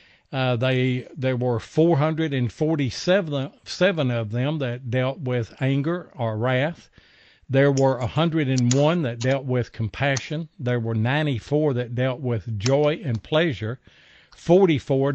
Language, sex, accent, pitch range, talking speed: English, male, American, 120-150 Hz, 125 wpm